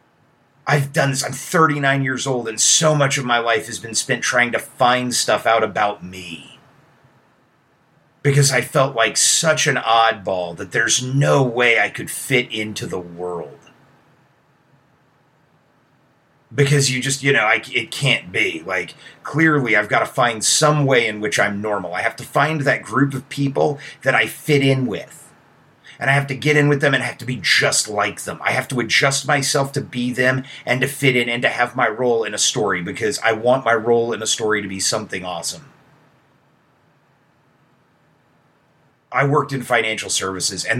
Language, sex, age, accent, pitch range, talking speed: English, male, 30-49, American, 115-140 Hz, 185 wpm